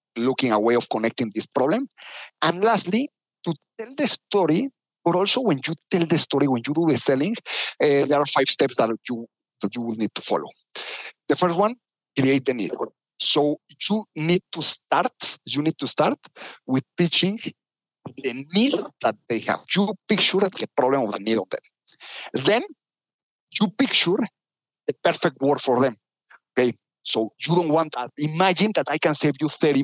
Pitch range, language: 135-185 Hz, English